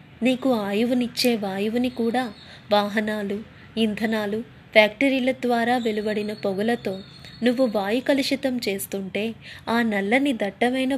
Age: 20-39